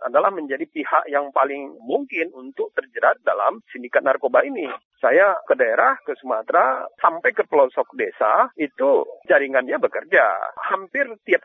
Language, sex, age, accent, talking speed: Indonesian, male, 40-59, native, 135 wpm